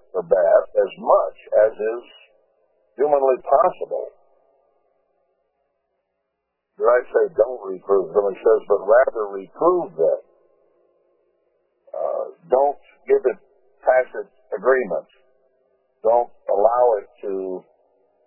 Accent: American